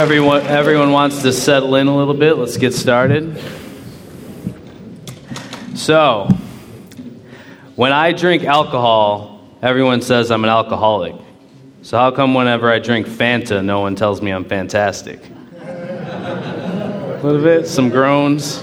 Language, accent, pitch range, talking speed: English, American, 110-140 Hz, 130 wpm